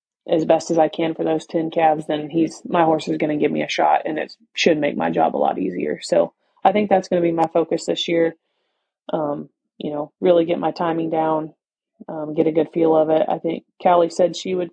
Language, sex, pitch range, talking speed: English, female, 160-175 Hz, 250 wpm